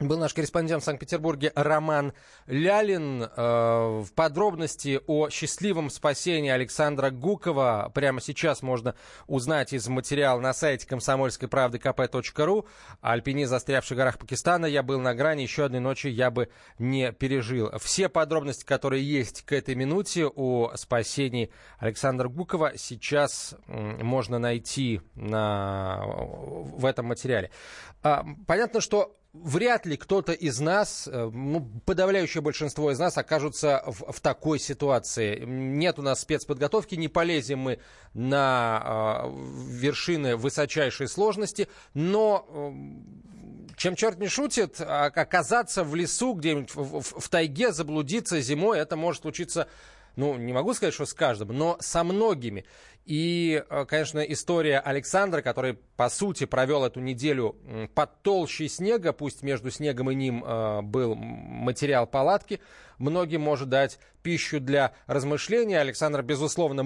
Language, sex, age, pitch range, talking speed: Russian, male, 20-39, 130-165 Hz, 125 wpm